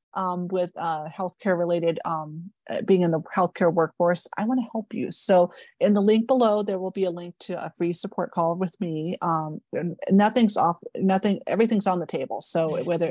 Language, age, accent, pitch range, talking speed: English, 30-49, American, 170-205 Hz, 195 wpm